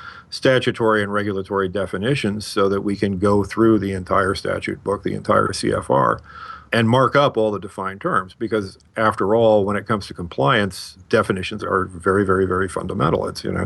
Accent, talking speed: American, 180 wpm